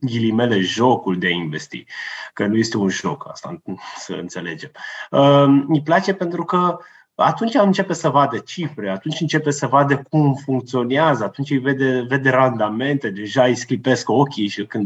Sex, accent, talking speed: male, native, 160 wpm